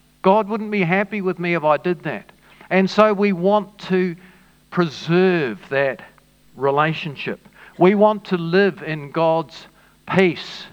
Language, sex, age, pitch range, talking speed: English, male, 50-69, 150-190 Hz, 140 wpm